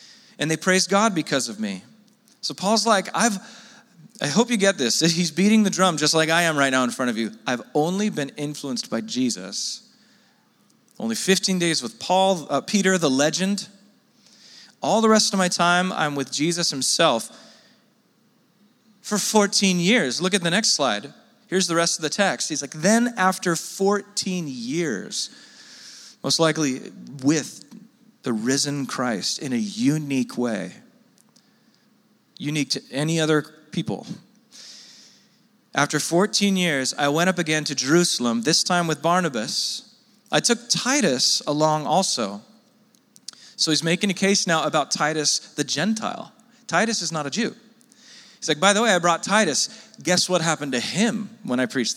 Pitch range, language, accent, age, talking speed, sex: 155-225 Hz, English, American, 40-59, 160 wpm, male